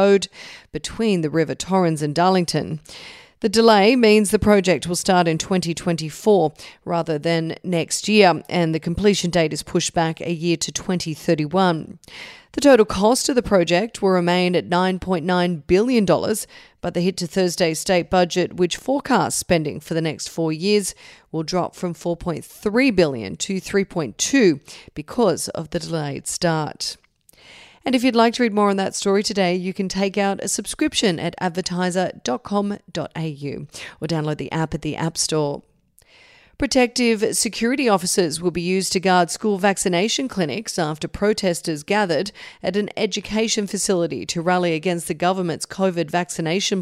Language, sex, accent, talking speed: English, female, Australian, 155 wpm